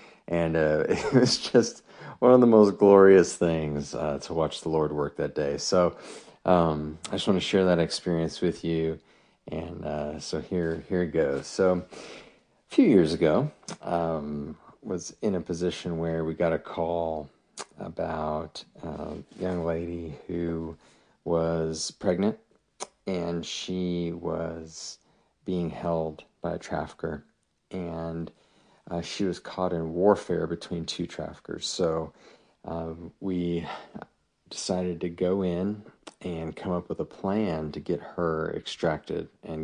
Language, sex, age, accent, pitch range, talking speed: English, male, 30-49, American, 80-90 Hz, 145 wpm